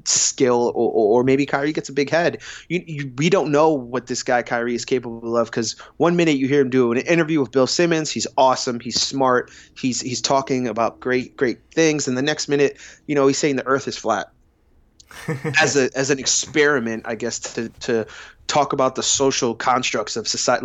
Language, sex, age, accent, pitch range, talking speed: English, male, 20-39, American, 115-145 Hz, 210 wpm